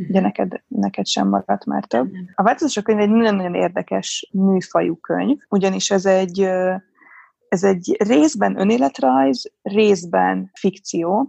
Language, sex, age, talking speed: Hungarian, female, 20-39, 120 wpm